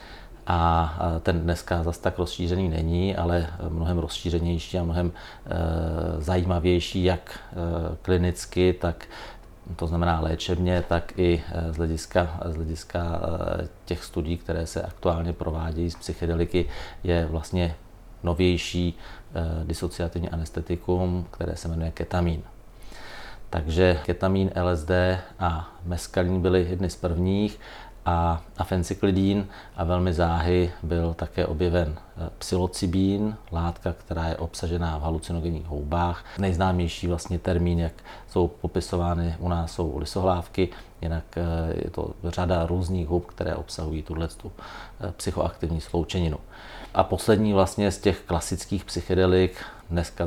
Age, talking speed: 40-59, 115 wpm